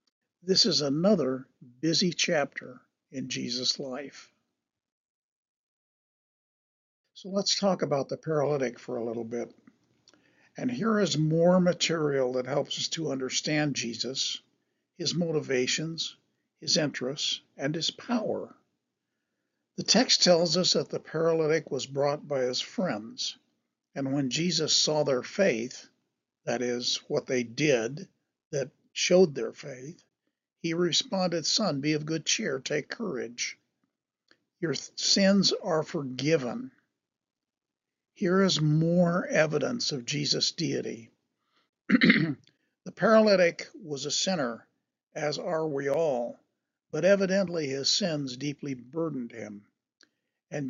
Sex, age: male, 60-79